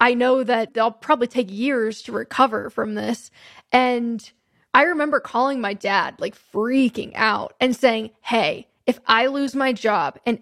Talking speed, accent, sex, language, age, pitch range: 165 wpm, American, female, English, 10-29, 220-265 Hz